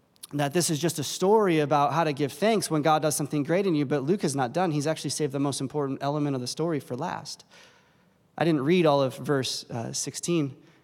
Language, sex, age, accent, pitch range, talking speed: English, male, 20-39, American, 150-215 Hz, 240 wpm